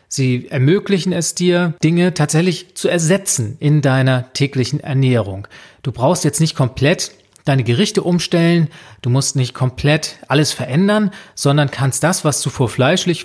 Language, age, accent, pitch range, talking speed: German, 40-59, German, 135-175 Hz, 145 wpm